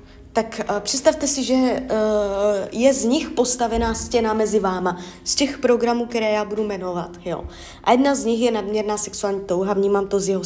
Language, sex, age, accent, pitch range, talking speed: Czech, female, 20-39, native, 185-225 Hz, 180 wpm